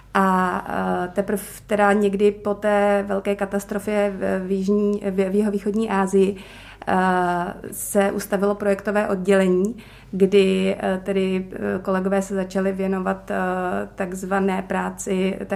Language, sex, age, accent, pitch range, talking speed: Czech, female, 30-49, native, 180-200 Hz, 90 wpm